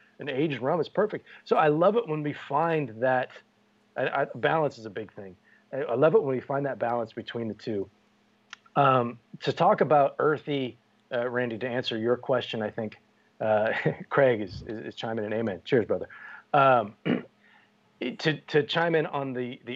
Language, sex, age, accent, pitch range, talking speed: English, male, 30-49, American, 120-145 Hz, 190 wpm